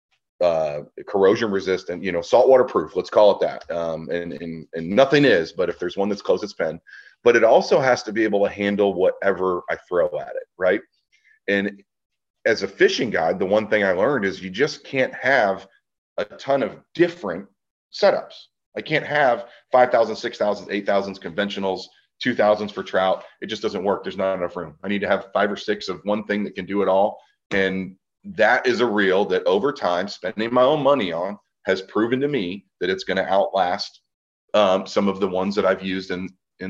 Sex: male